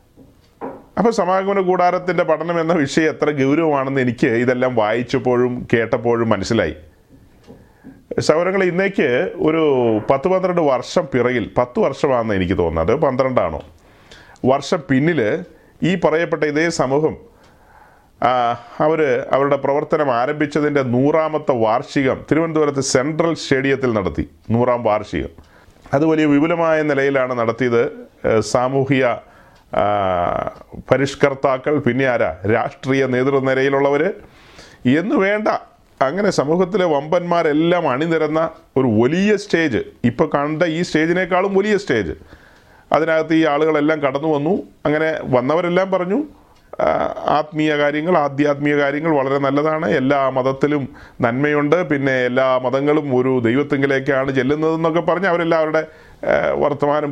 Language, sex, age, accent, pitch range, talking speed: Malayalam, male, 30-49, native, 130-165 Hz, 100 wpm